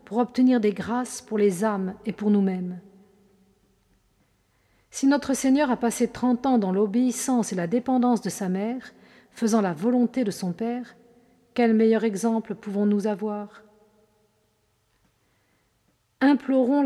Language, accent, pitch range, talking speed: French, French, 205-245 Hz, 130 wpm